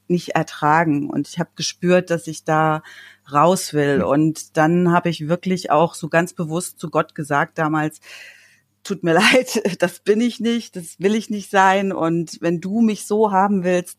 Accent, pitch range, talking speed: German, 155-180 Hz, 185 wpm